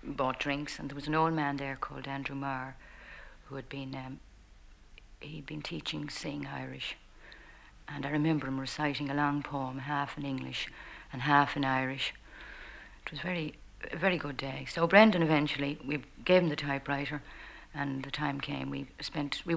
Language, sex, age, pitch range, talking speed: English, female, 60-79, 135-155 Hz, 180 wpm